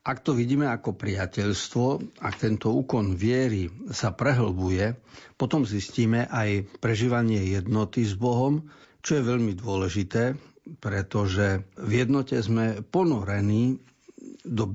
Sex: male